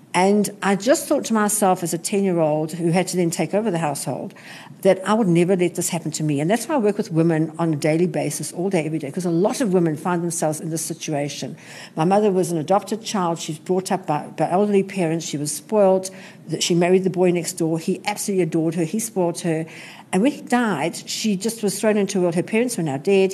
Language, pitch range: English, 160-195 Hz